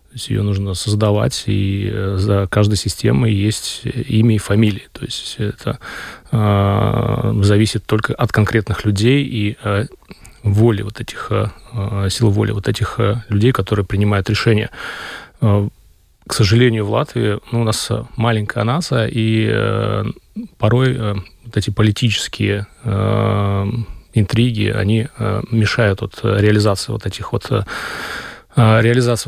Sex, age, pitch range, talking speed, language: male, 30-49, 105-115 Hz, 125 wpm, Russian